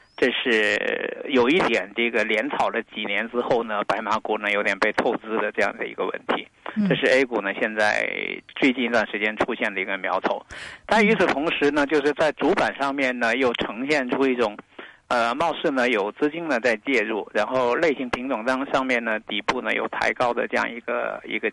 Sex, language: male, Chinese